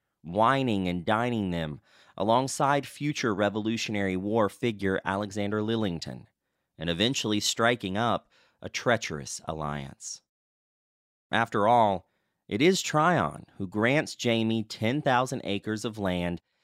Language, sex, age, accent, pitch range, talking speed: English, male, 30-49, American, 95-130 Hz, 110 wpm